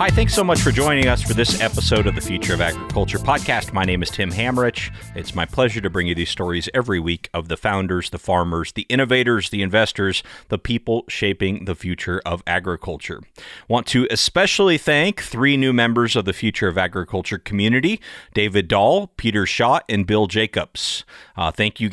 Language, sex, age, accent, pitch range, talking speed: English, male, 30-49, American, 95-125 Hz, 190 wpm